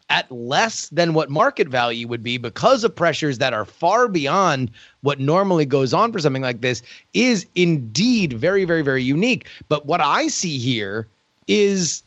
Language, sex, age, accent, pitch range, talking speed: English, male, 30-49, American, 135-190 Hz, 175 wpm